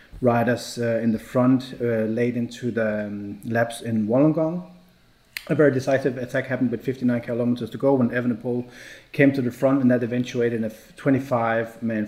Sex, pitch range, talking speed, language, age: male, 110-130 Hz, 185 wpm, English, 30-49